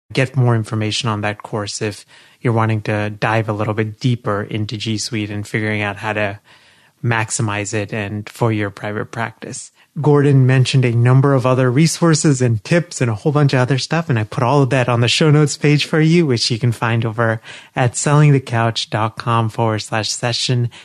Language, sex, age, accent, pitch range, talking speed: English, male, 30-49, American, 110-135 Hz, 200 wpm